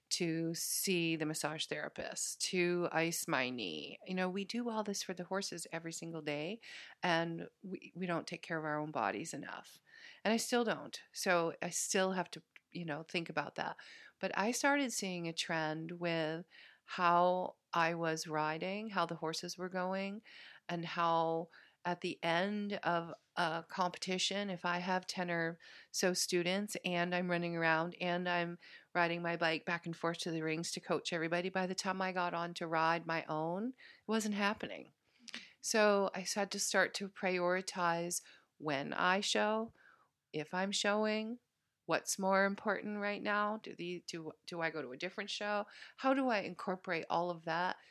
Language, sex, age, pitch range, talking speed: English, female, 40-59, 165-200 Hz, 180 wpm